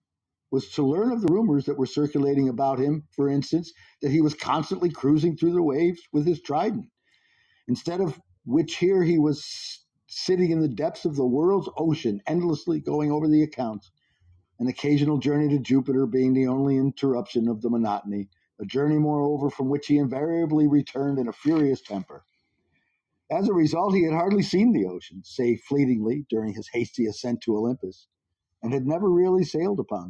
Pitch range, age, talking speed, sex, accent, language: 110-155 Hz, 50-69, 180 wpm, male, American, English